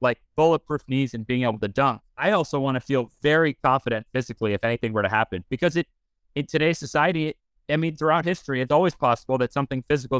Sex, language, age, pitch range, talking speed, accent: male, English, 30-49, 110-140 Hz, 220 wpm, American